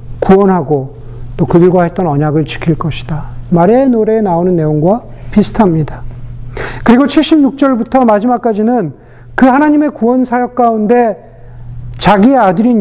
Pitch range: 130-215 Hz